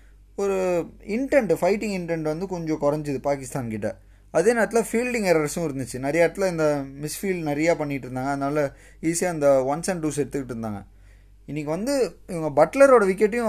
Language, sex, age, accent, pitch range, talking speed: Tamil, male, 20-39, native, 135-195 Hz, 150 wpm